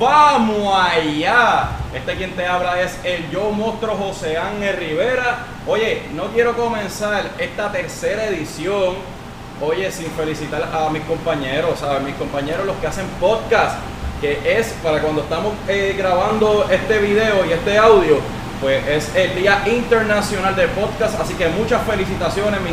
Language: English